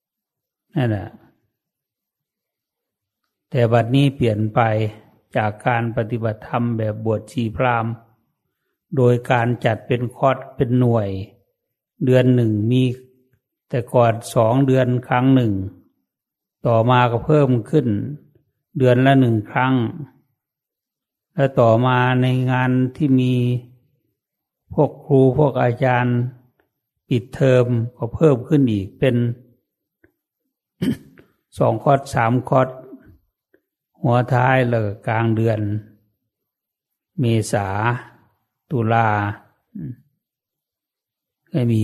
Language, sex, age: English, male, 60-79